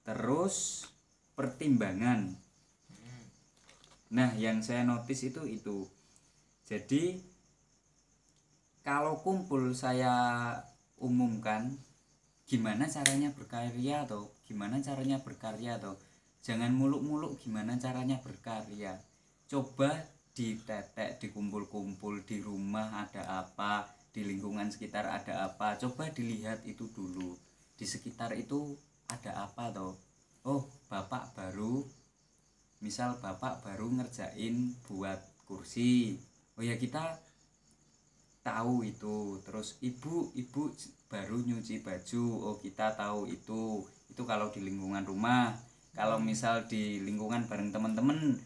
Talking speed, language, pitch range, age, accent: 105 wpm, Indonesian, 105-135 Hz, 20-39, native